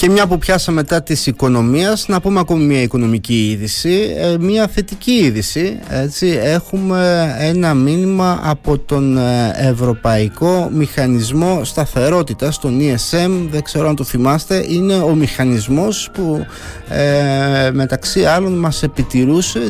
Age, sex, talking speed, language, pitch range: 30-49, male, 120 wpm, Greek, 115-170 Hz